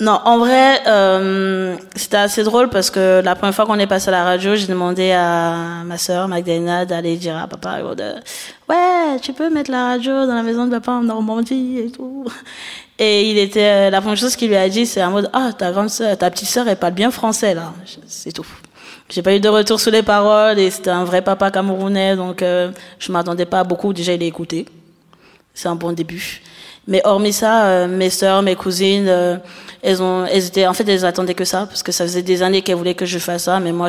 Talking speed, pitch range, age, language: 235 wpm, 175-200 Hz, 20-39, French